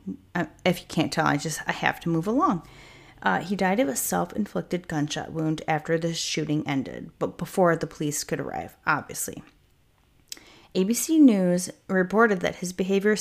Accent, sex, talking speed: American, female, 165 wpm